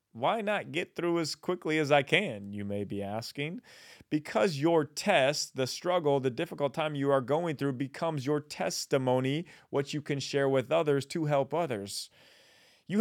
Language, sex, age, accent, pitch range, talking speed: English, male, 30-49, American, 115-155 Hz, 175 wpm